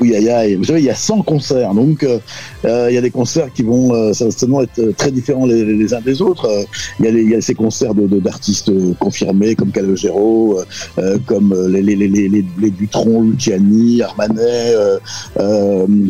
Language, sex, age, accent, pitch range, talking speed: French, male, 50-69, French, 105-145 Hz, 195 wpm